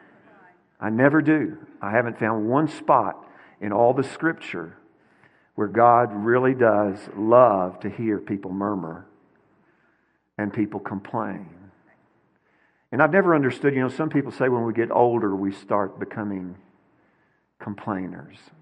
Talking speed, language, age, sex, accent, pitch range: 130 wpm, English, 50-69, male, American, 100-125 Hz